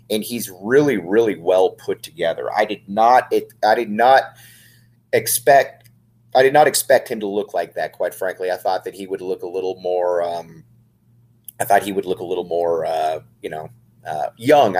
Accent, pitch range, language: American, 105-125 Hz, English